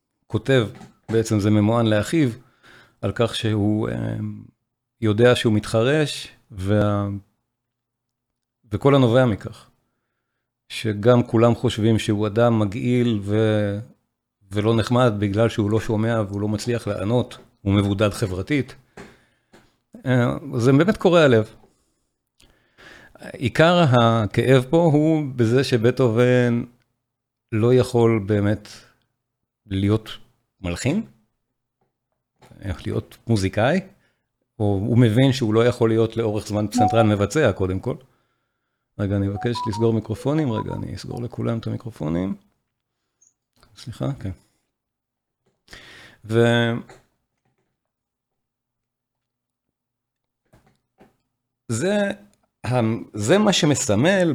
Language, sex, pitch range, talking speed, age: Hebrew, male, 110-125 Hz, 95 wpm, 50-69